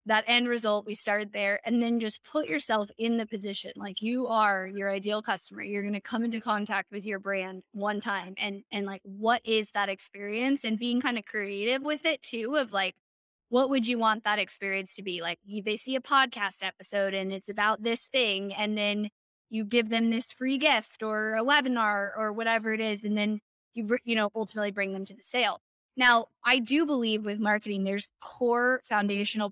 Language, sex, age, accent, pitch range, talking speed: English, female, 10-29, American, 205-245 Hz, 205 wpm